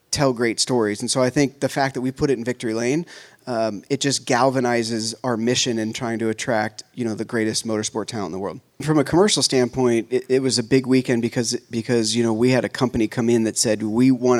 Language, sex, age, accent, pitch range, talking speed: English, male, 30-49, American, 110-130 Hz, 245 wpm